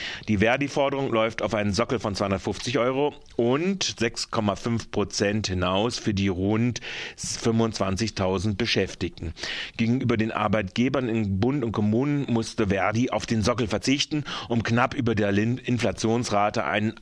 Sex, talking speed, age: male, 130 wpm, 40-59